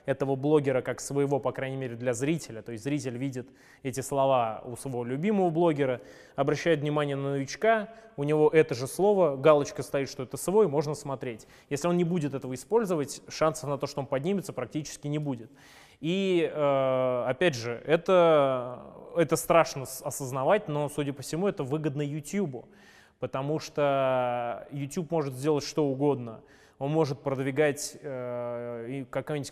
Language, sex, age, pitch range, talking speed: Russian, male, 20-39, 130-155 Hz, 155 wpm